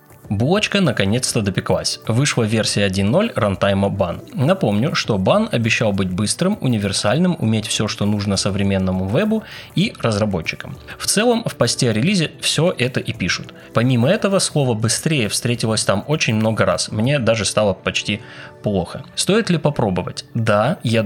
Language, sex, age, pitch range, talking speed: Russian, male, 20-39, 105-145 Hz, 145 wpm